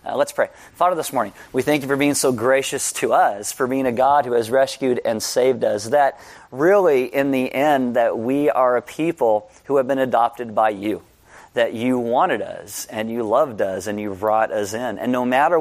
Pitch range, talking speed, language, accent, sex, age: 115-135 Hz, 220 wpm, English, American, male, 30-49